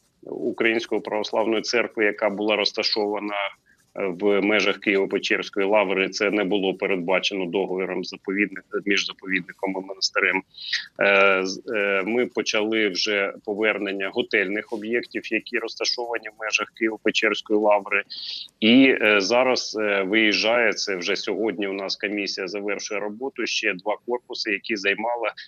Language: Ukrainian